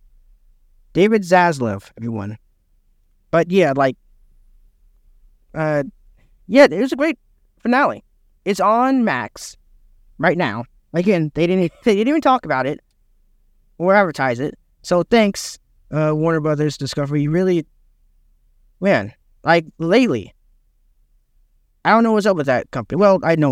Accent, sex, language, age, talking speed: American, male, English, 20-39, 130 wpm